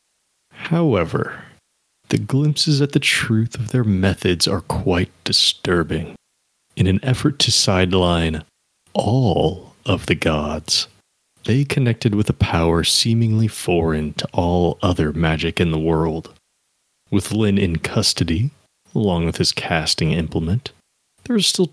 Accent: American